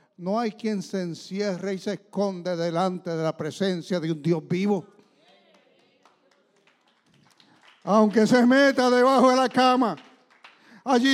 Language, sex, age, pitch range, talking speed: English, male, 60-79, 160-215 Hz, 130 wpm